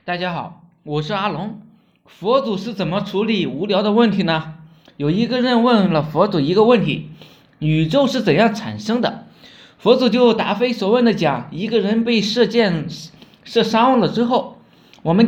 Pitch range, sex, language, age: 175-240 Hz, male, Chinese, 20-39